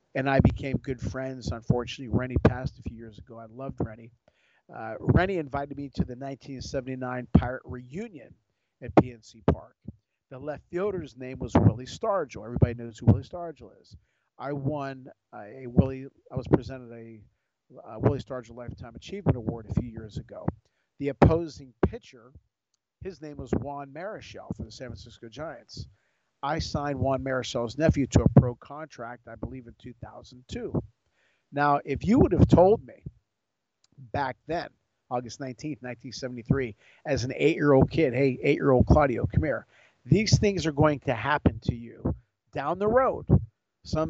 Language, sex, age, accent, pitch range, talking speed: English, male, 50-69, American, 120-145 Hz, 160 wpm